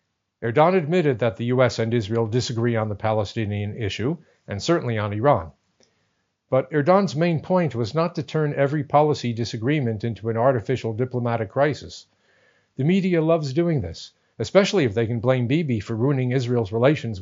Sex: male